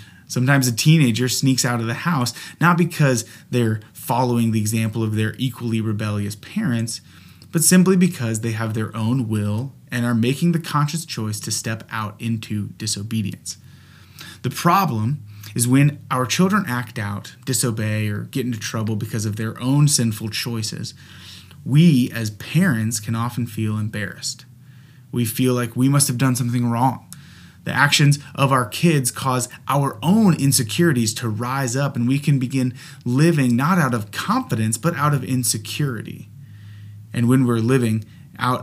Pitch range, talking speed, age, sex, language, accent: 110-140 Hz, 160 wpm, 30-49, male, English, American